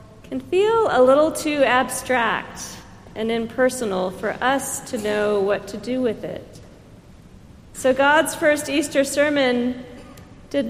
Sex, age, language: female, 40-59, English